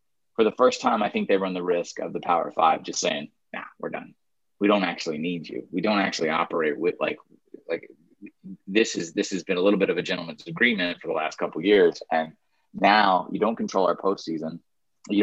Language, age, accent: English, 20-39, American